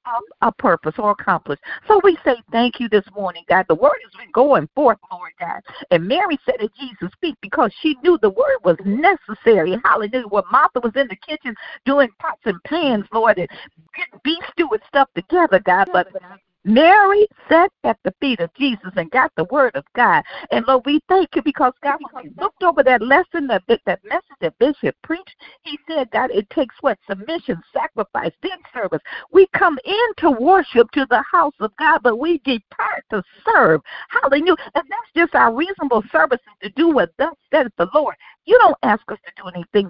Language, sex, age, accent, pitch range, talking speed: English, female, 50-69, American, 210-315 Hz, 200 wpm